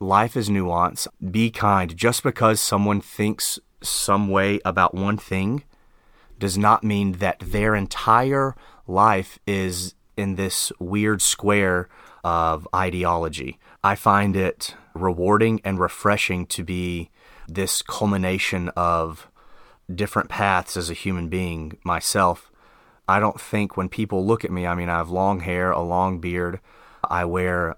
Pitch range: 90-105 Hz